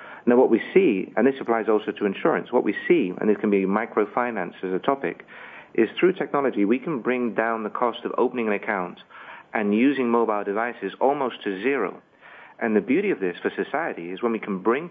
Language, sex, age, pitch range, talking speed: English, male, 50-69, 105-125 Hz, 215 wpm